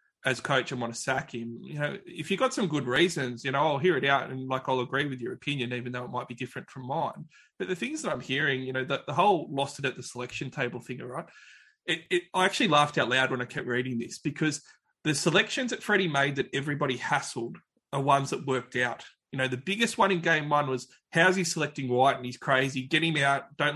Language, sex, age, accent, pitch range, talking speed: English, male, 20-39, Australian, 130-165 Hz, 255 wpm